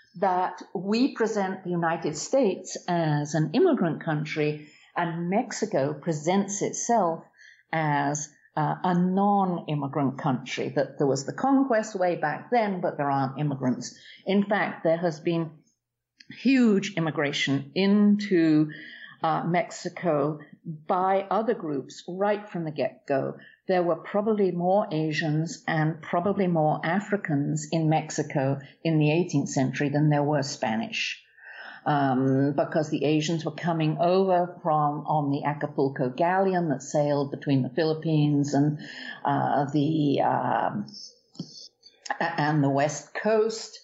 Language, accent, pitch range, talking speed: English, British, 145-185 Hz, 125 wpm